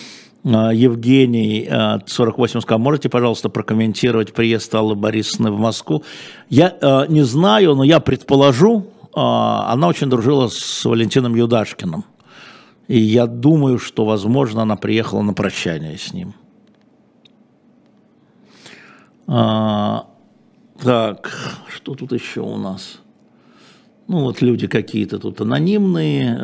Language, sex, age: Russian, male, 50-69